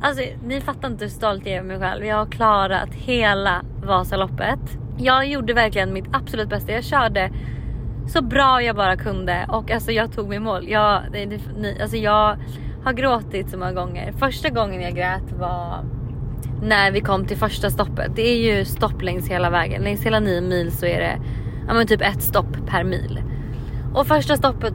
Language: Swedish